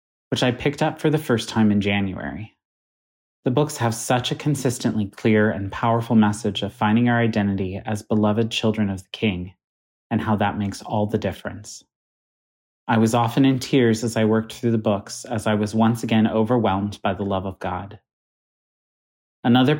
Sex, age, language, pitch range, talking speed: male, 30-49, English, 105-125 Hz, 180 wpm